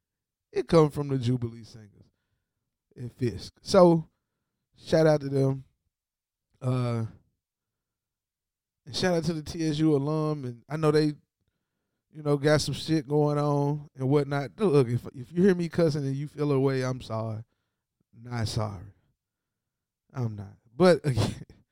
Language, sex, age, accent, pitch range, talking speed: English, male, 20-39, American, 125-165 Hz, 150 wpm